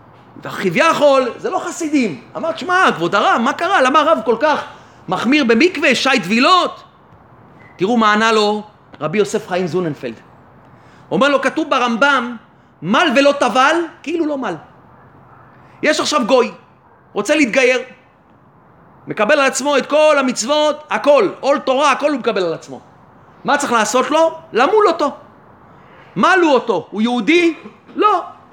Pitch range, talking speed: 225-295 Hz, 140 wpm